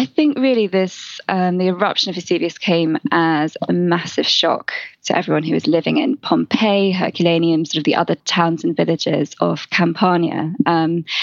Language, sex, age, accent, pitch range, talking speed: English, female, 20-39, British, 160-190 Hz, 170 wpm